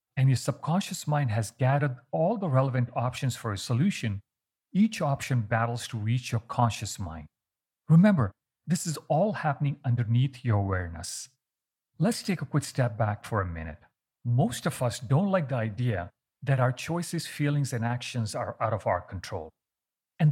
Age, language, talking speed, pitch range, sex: 40-59, English, 170 wpm, 110-140 Hz, male